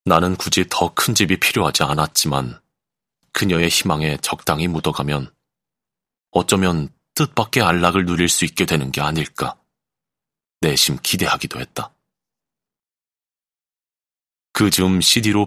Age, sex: 30-49, male